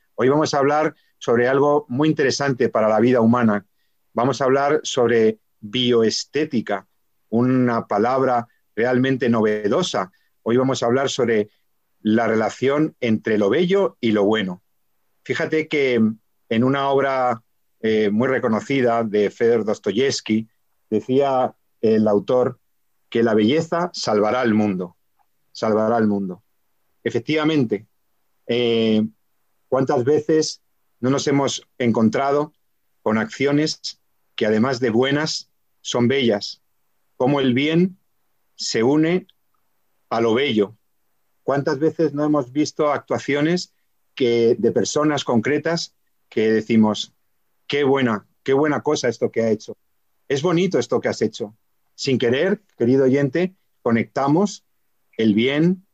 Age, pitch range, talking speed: 50-69, 110-150 Hz, 125 wpm